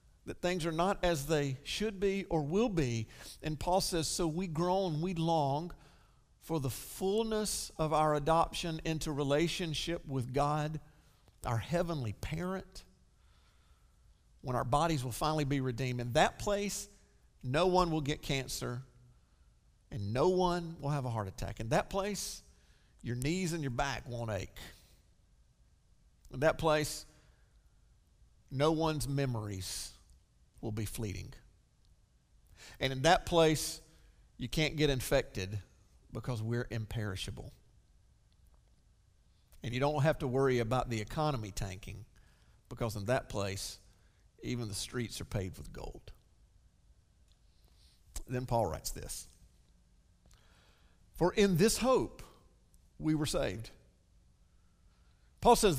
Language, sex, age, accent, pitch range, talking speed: English, male, 50-69, American, 105-160 Hz, 130 wpm